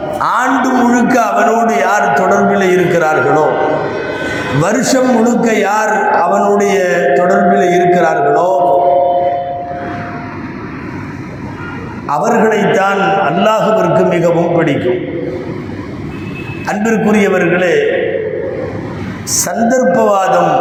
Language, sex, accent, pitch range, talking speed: Tamil, male, native, 175-235 Hz, 50 wpm